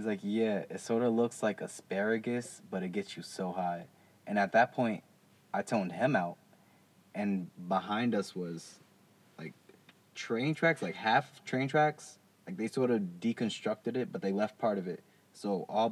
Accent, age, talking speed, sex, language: American, 20-39, 180 wpm, male, English